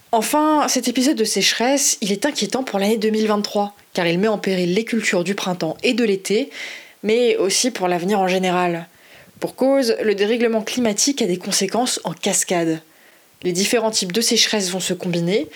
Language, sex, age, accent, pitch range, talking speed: French, female, 20-39, French, 180-225 Hz, 180 wpm